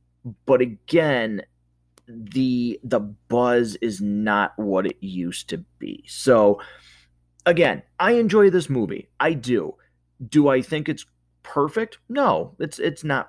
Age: 30-49